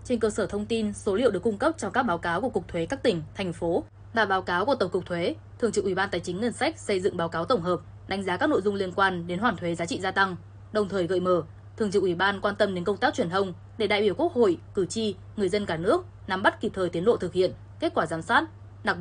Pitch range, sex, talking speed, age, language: 160-210 Hz, female, 300 wpm, 10-29, Vietnamese